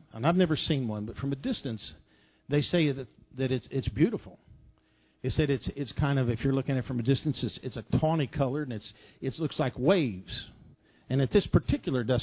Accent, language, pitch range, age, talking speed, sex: American, English, 125-165 Hz, 50-69, 225 wpm, male